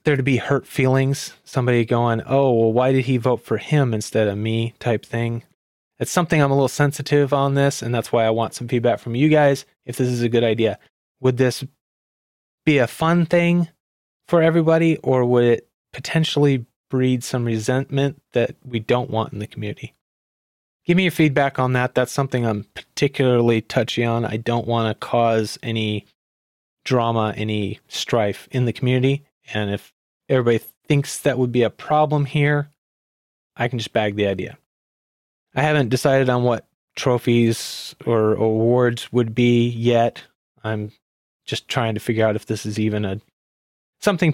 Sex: male